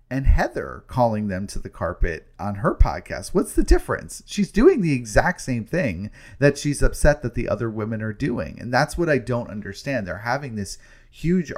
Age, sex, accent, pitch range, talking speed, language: 30-49, male, American, 100-130 Hz, 195 wpm, English